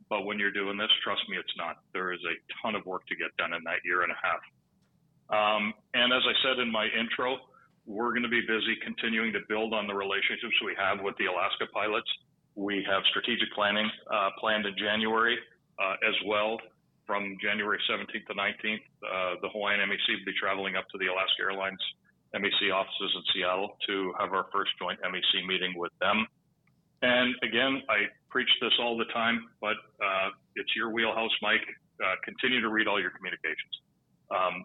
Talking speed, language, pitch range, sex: 195 wpm, English, 100-115 Hz, male